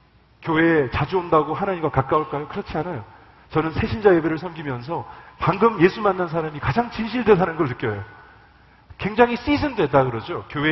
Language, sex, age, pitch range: Korean, male, 40-59, 135-200 Hz